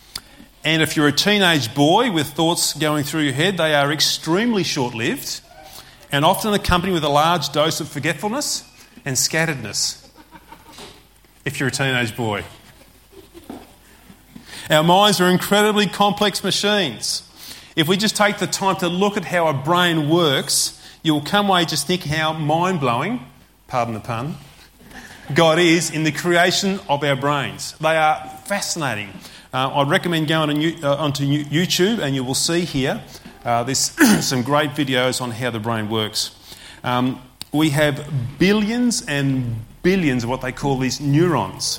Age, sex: 30-49, male